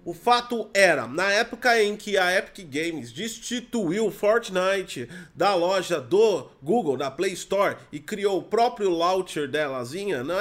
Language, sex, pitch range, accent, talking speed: Portuguese, male, 170-220 Hz, Brazilian, 155 wpm